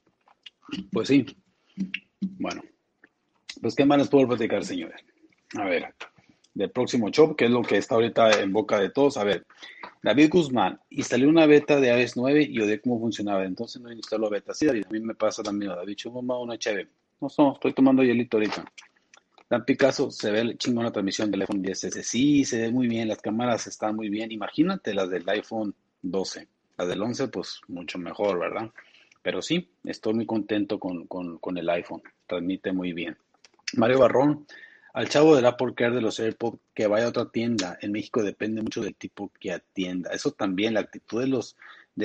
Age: 40-59